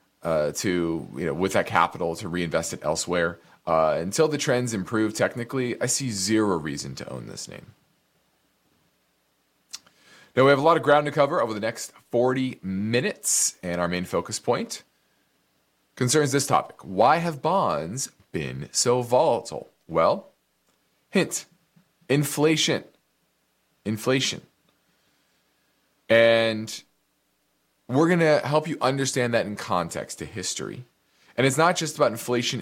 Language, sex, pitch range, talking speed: English, male, 95-140 Hz, 135 wpm